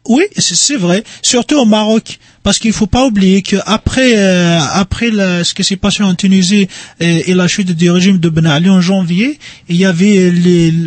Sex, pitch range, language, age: male, 160-200 Hz, French, 40-59